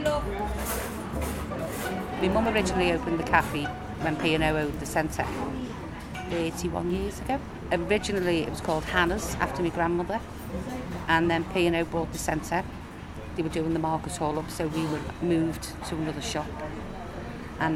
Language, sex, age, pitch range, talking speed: English, female, 40-59, 165-255 Hz, 145 wpm